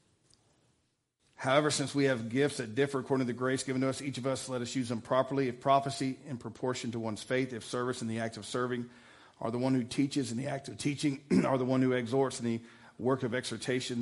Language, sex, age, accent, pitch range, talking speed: English, male, 50-69, American, 110-130 Hz, 240 wpm